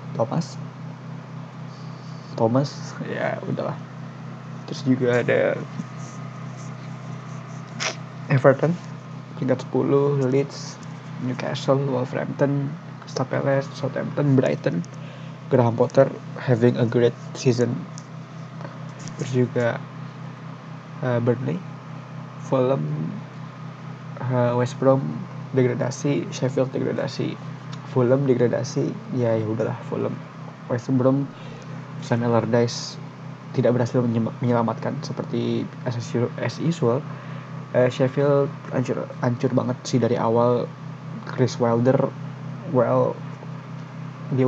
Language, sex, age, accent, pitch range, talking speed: Indonesian, male, 20-39, native, 125-150 Hz, 80 wpm